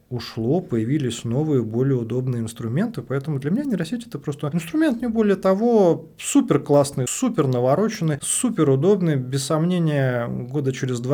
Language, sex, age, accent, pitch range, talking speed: Russian, male, 30-49, native, 125-160 Hz, 140 wpm